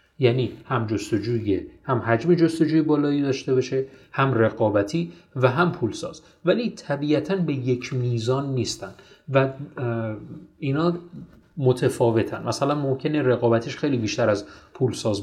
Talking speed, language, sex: 120 wpm, Persian, male